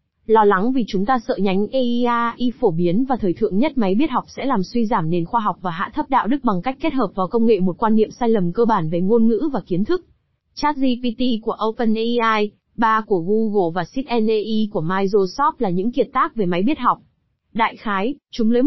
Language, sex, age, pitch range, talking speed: Vietnamese, female, 20-39, 195-245 Hz, 230 wpm